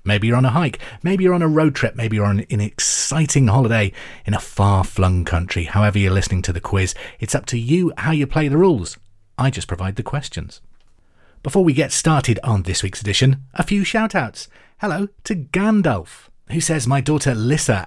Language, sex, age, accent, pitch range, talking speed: English, male, 30-49, British, 95-140 Hz, 200 wpm